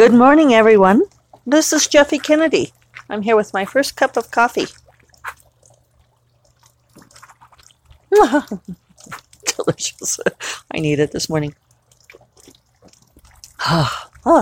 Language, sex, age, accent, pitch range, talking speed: English, female, 40-59, American, 155-235 Hz, 90 wpm